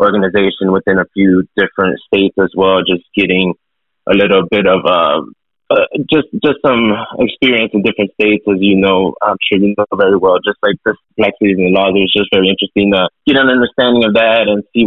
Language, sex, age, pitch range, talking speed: English, male, 20-39, 95-105 Hz, 205 wpm